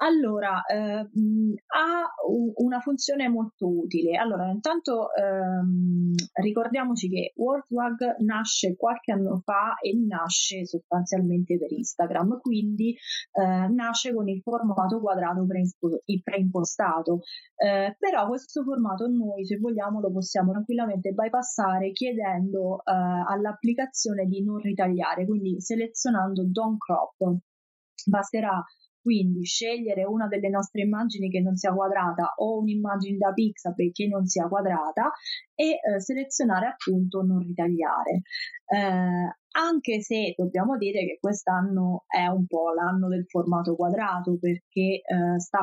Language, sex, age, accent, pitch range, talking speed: Italian, female, 20-39, native, 180-220 Hz, 120 wpm